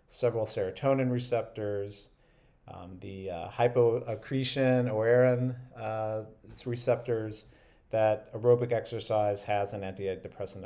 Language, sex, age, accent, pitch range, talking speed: English, male, 40-59, American, 110-130 Hz, 95 wpm